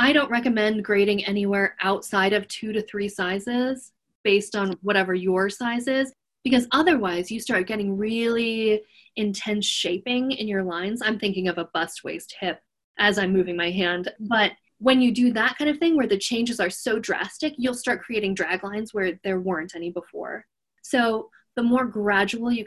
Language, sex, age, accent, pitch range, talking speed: English, female, 20-39, American, 180-215 Hz, 185 wpm